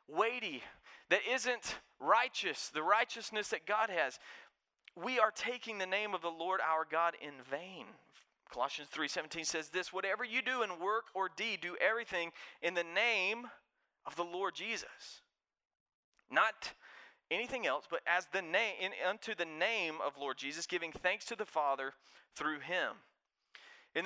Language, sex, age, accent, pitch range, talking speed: English, male, 40-59, American, 145-195 Hz, 155 wpm